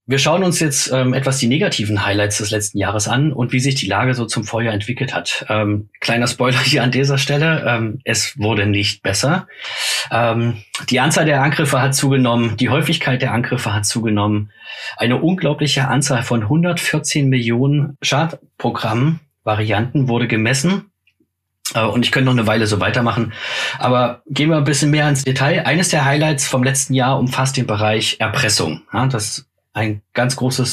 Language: German